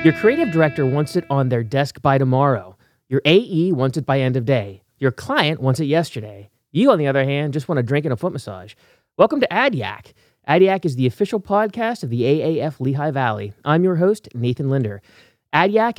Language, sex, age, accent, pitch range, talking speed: English, male, 30-49, American, 125-170 Hz, 205 wpm